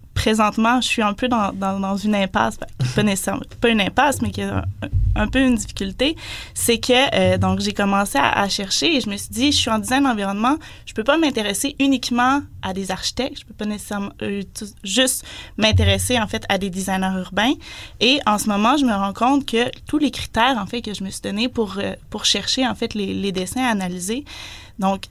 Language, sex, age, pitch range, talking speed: French, female, 20-39, 195-245 Hz, 235 wpm